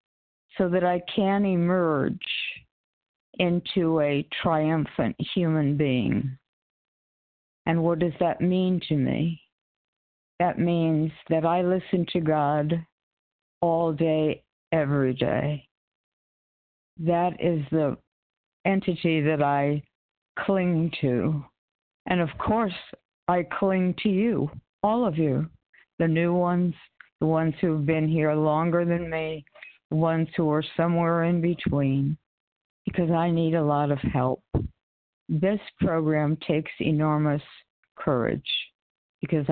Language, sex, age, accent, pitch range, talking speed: English, female, 60-79, American, 145-175 Hz, 115 wpm